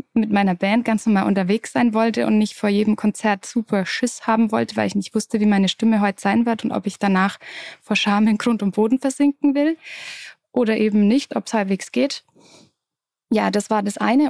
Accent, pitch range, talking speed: German, 205-245 Hz, 215 wpm